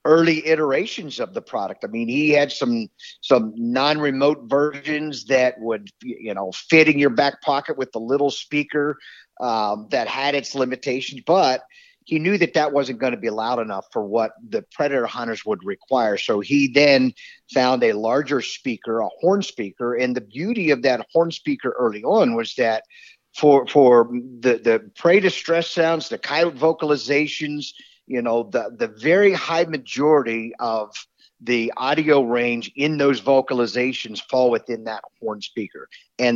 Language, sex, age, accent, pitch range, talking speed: English, male, 50-69, American, 125-165 Hz, 165 wpm